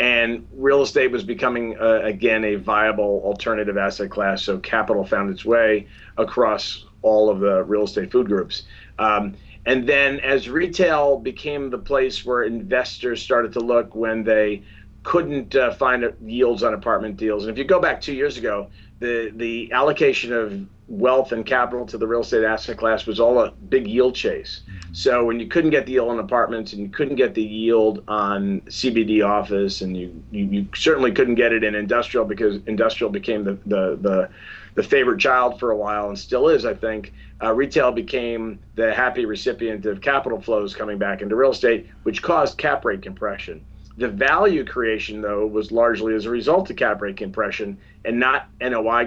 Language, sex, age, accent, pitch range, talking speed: English, male, 40-59, American, 105-120 Hz, 190 wpm